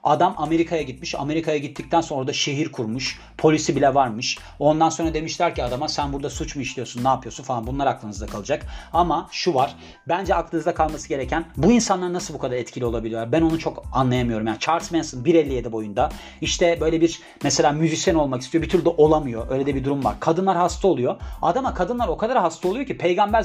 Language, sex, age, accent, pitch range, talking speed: Turkish, male, 40-59, native, 130-175 Hz, 200 wpm